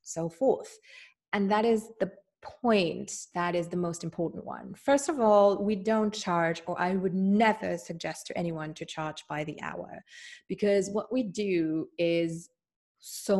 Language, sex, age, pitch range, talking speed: English, female, 30-49, 170-205 Hz, 165 wpm